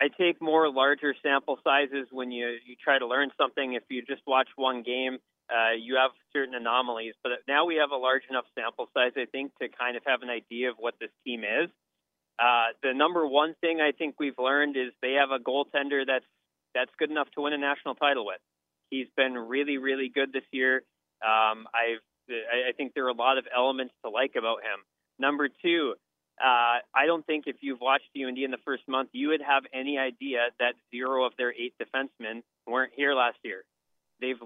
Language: English